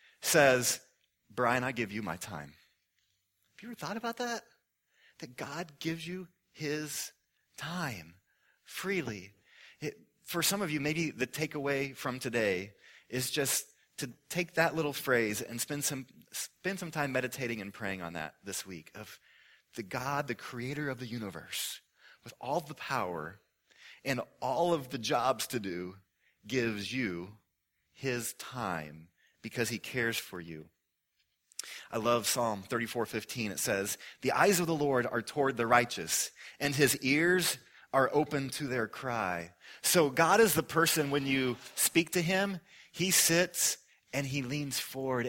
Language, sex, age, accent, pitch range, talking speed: English, male, 30-49, American, 110-145 Hz, 155 wpm